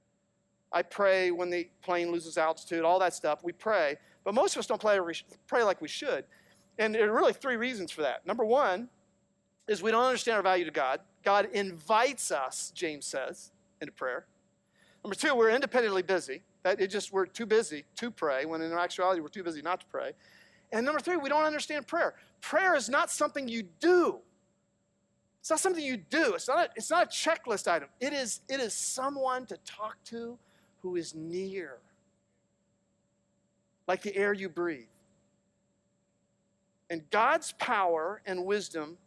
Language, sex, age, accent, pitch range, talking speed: English, male, 40-59, American, 170-240 Hz, 170 wpm